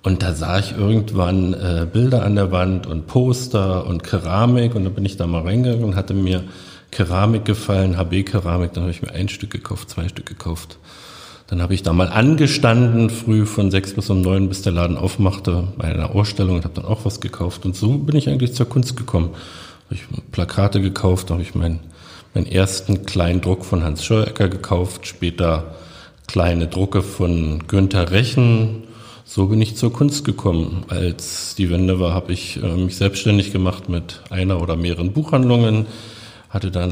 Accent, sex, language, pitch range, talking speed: German, male, German, 90-110 Hz, 185 wpm